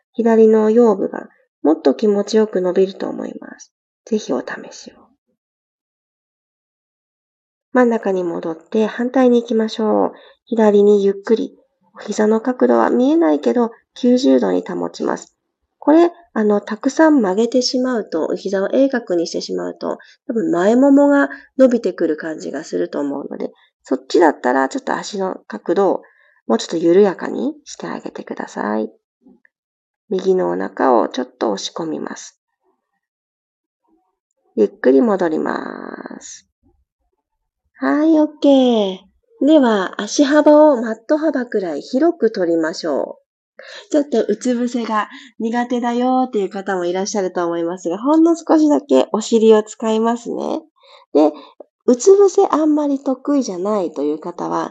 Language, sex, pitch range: Japanese, female, 190-280 Hz